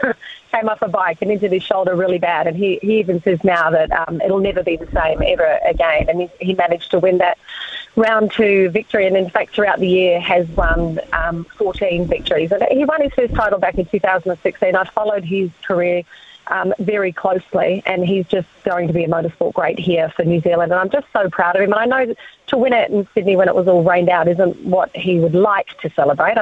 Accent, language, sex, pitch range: Australian, English, female, 170-205 Hz